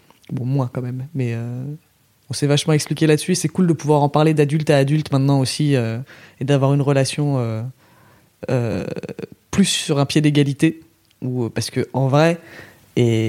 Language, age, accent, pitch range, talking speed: French, 20-39, French, 130-170 Hz, 180 wpm